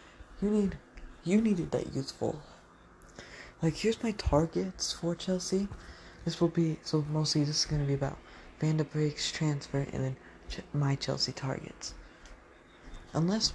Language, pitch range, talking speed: English, 130-160 Hz, 145 wpm